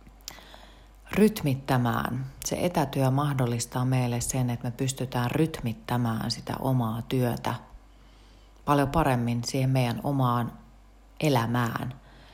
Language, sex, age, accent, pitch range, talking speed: Finnish, female, 30-49, native, 115-140 Hz, 90 wpm